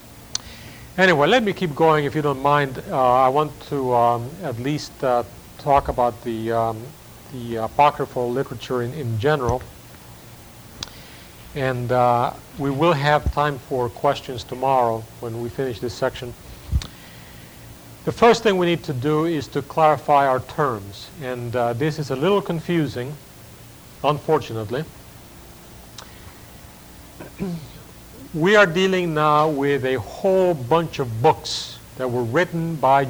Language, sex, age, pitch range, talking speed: English, male, 50-69, 120-150 Hz, 135 wpm